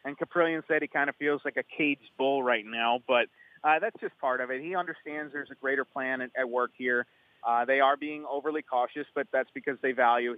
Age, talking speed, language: 30-49, 235 wpm, English